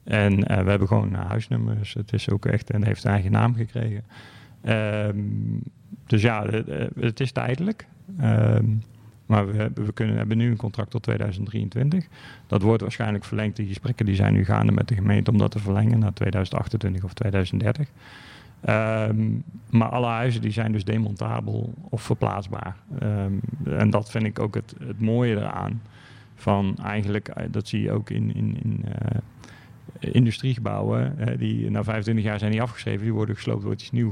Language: English